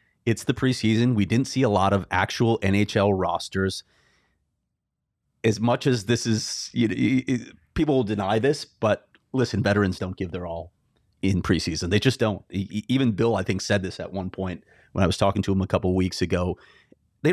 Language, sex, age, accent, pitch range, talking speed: English, male, 30-49, American, 95-120 Hz, 195 wpm